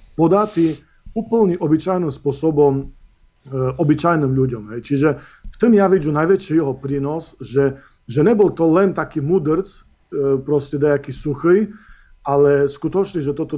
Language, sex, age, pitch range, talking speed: Slovak, male, 40-59, 135-160 Hz, 135 wpm